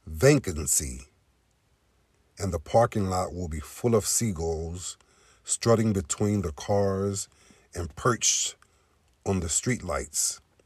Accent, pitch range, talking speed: American, 85-115 Hz, 105 wpm